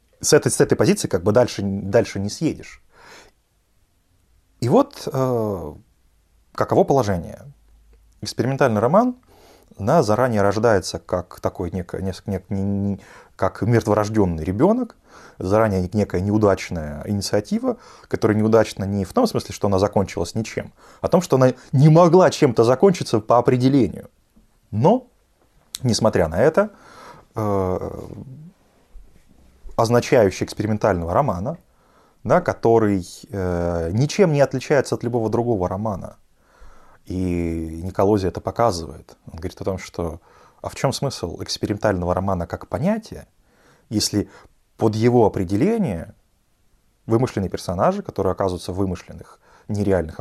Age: 30-49